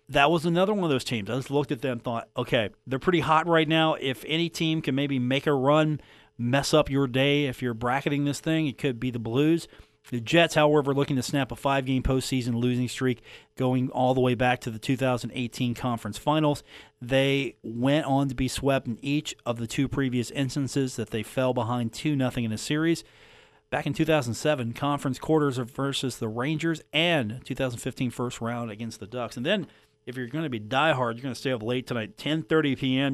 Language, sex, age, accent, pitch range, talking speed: English, male, 40-59, American, 125-155 Hz, 210 wpm